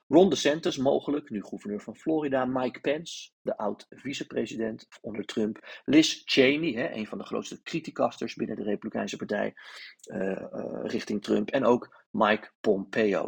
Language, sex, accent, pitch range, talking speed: Dutch, male, Dutch, 110-145 Hz, 150 wpm